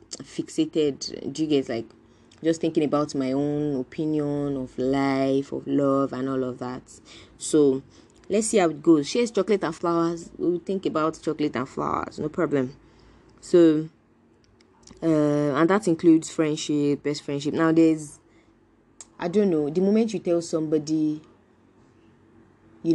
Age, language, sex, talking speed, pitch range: 20-39, English, female, 150 wpm, 135-170 Hz